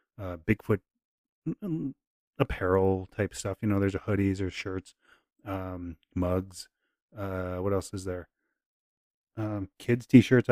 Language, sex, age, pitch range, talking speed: English, male, 30-49, 95-125 Hz, 125 wpm